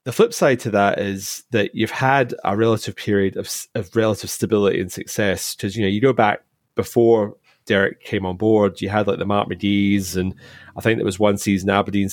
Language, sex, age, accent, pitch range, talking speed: English, male, 30-49, British, 100-115 Hz, 215 wpm